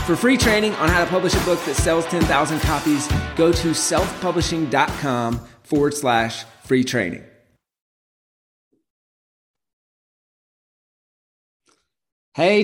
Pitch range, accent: 135-170 Hz, American